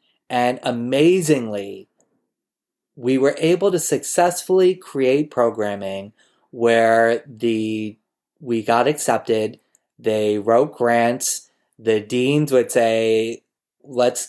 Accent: American